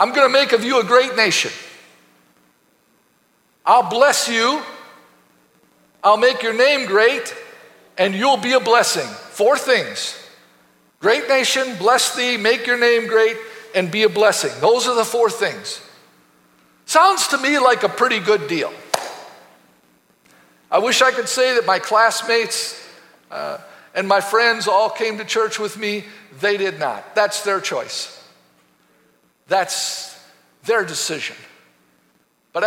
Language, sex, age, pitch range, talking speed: English, male, 50-69, 190-275 Hz, 140 wpm